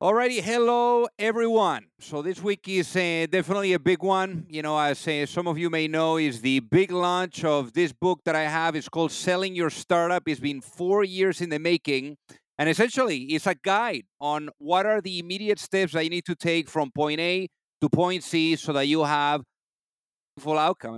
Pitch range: 150-180 Hz